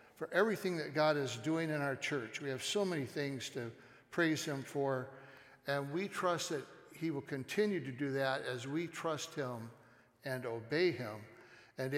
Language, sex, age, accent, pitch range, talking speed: English, male, 60-79, American, 120-155 Hz, 180 wpm